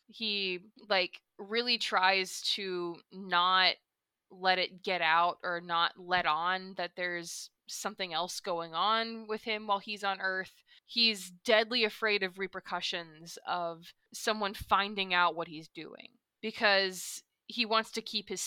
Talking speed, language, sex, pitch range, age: 145 wpm, English, female, 180-220 Hz, 20-39